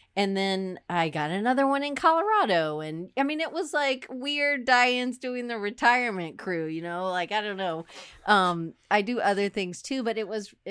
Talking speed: 195 wpm